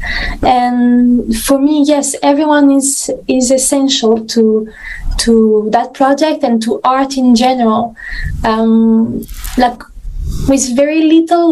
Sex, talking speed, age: female, 115 wpm, 20-39